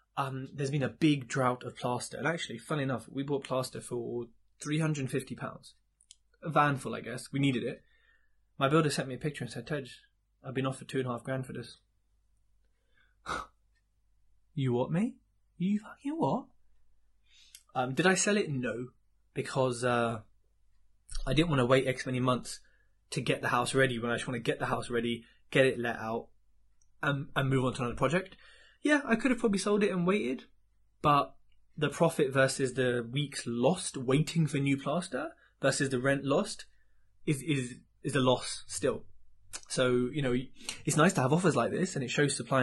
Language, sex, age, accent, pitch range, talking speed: English, male, 20-39, British, 120-150 Hz, 195 wpm